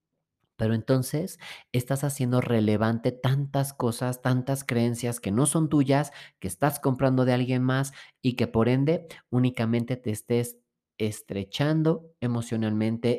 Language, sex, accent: Spanish, male, Mexican